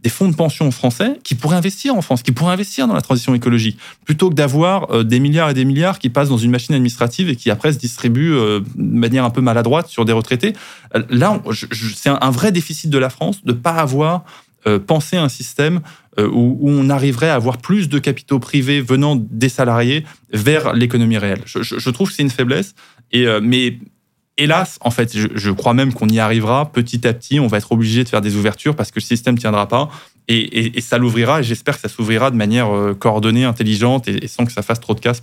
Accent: French